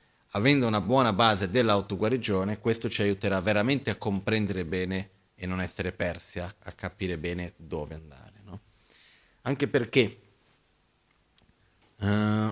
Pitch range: 100-120 Hz